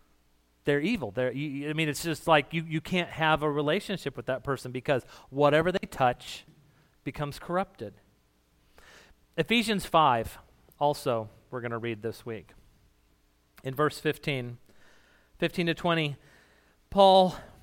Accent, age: American, 40-59